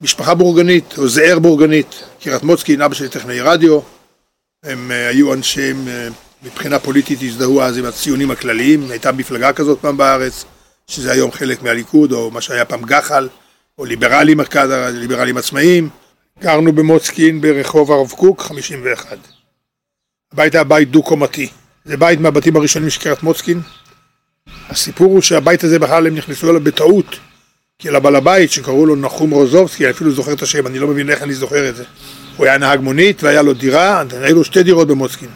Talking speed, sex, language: 165 wpm, male, Hebrew